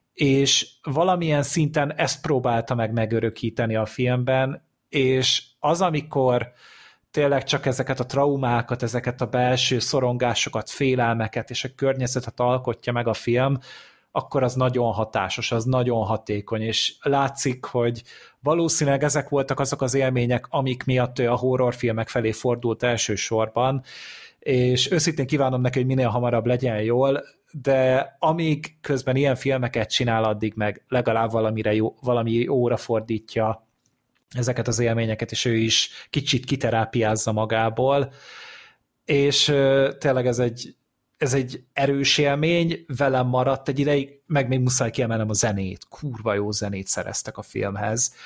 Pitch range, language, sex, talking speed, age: 115-140 Hz, Hungarian, male, 135 wpm, 30-49